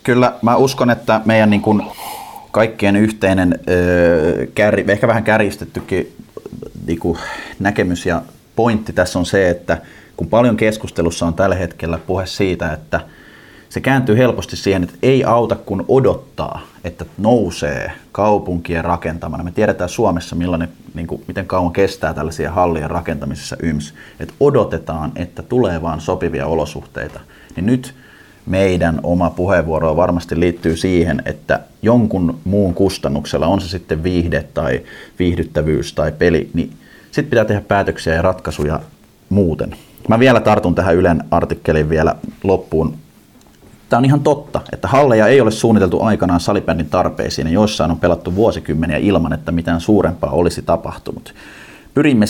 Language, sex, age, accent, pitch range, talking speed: Finnish, male, 30-49, native, 85-110 Hz, 130 wpm